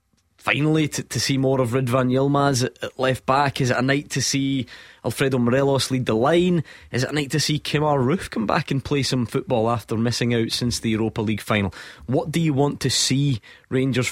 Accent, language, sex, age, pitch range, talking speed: British, English, male, 20-39, 110-135 Hz, 215 wpm